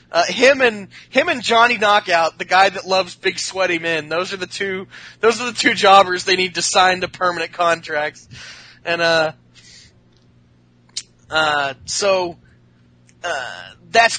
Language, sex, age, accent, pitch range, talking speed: English, male, 20-39, American, 140-215 Hz, 150 wpm